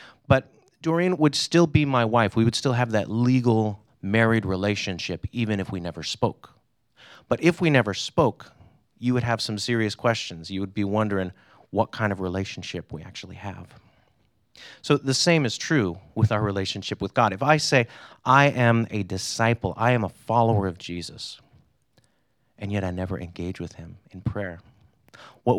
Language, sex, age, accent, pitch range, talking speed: English, male, 30-49, American, 95-125 Hz, 175 wpm